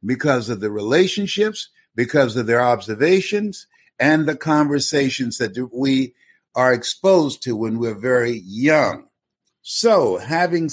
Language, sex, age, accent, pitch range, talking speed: English, male, 60-79, American, 130-180 Hz, 125 wpm